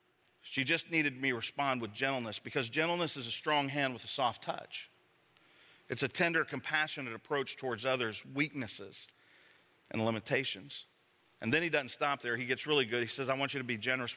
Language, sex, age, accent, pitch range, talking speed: English, male, 40-59, American, 125-150 Hz, 190 wpm